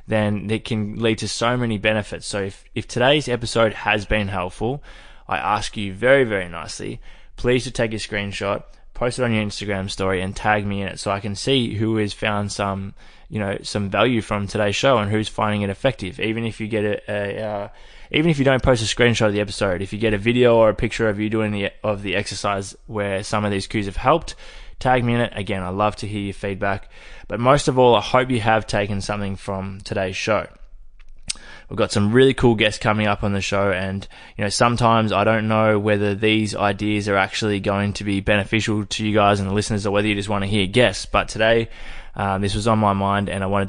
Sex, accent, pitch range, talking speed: male, Australian, 100-110 Hz, 240 wpm